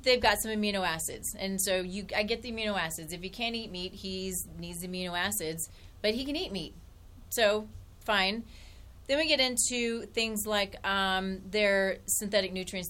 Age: 30-49